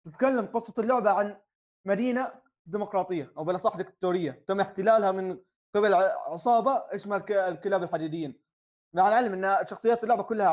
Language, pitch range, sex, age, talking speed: Arabic, 180-225 Hz, male, 20-39, 130 wpm